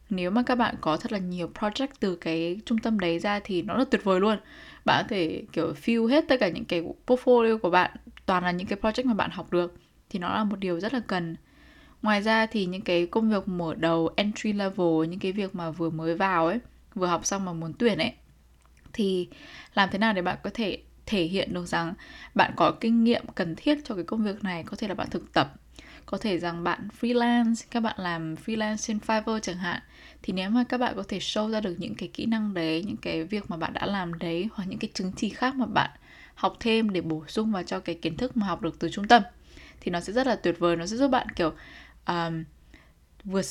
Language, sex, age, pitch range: Vietnamese, female, 10-29, 175-225 Hz